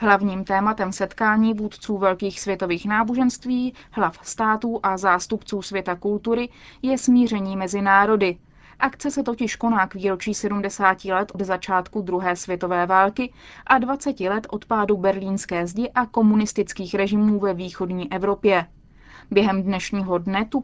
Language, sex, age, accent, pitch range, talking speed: Czech, female, 20-39, native, 190-230 Hz, 135 wpm